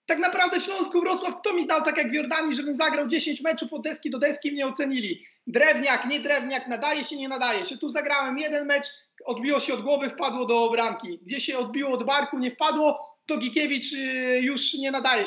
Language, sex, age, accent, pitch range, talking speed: Polish, male, 30-49, native, 245-305 Hz, 205 wpm